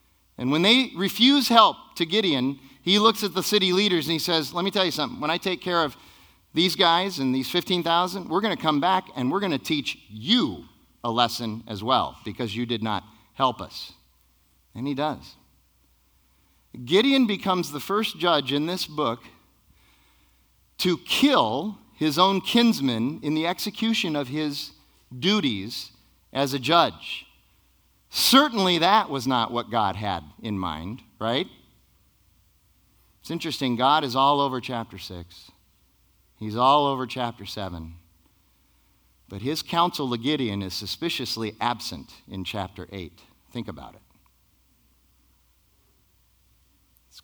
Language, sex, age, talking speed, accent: English, male, 40-59, 145 wpm, American